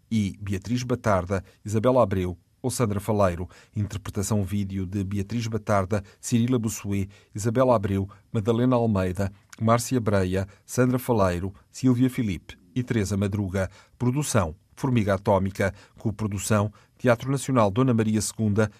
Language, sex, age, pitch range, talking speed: Portuguese, male, 40-59, 100-120 Hz, 115 wpm